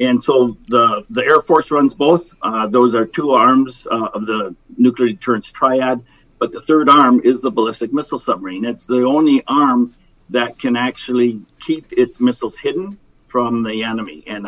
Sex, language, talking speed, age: male, English, 180 wpm, 50-69